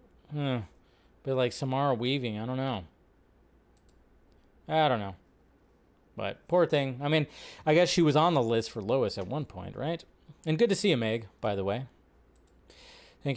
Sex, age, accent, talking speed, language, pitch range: male, 30-49, American, 180 wpm, English, 130-170 Hz